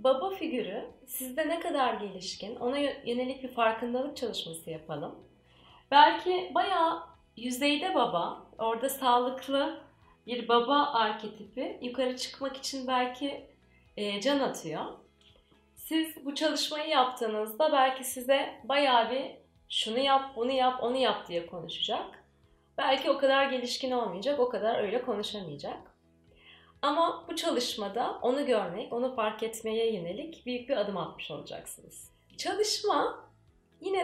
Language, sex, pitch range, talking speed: Turkish, female, 200-270 Hz, 120 wpm